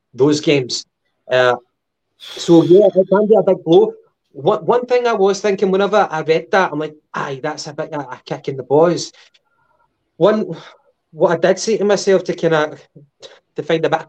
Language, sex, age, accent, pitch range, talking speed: English, male, 20-39, British, 145-170 Hz, 200 wpm